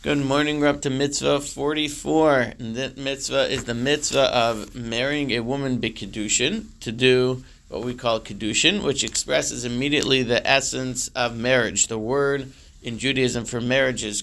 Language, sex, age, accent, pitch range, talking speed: English, male, 40-59, American, 120-145 Hz, 165 wpm